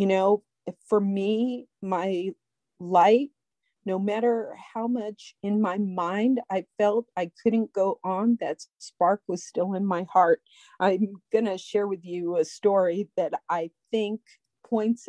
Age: 40-59